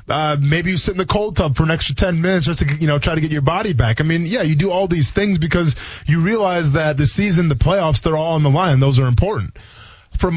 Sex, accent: male, American